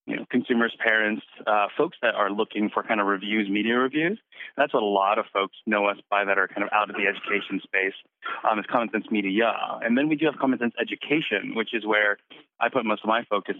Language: English